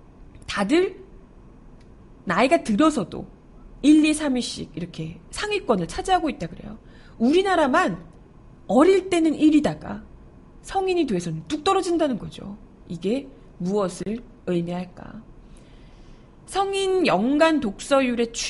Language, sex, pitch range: Korean, female, 195-305 Hz